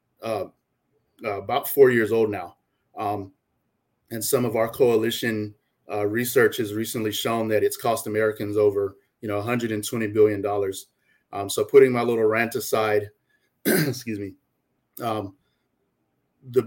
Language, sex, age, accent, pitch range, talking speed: English, male, 30-49, American, 110-130 Hz, 135 wpm